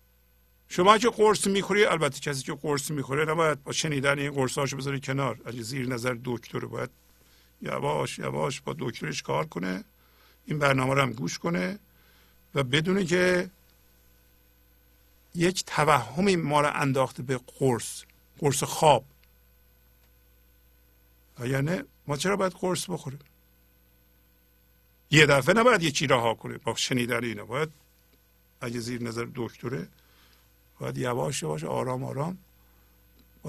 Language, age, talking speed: Persian, 50-69, 125 wpm